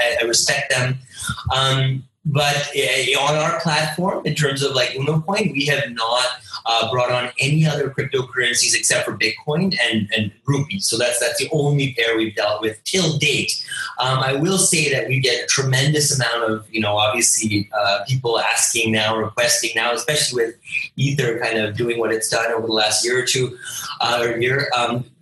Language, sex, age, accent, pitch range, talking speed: English, male, 30-49, American, 115-155 Hz, 185 wpm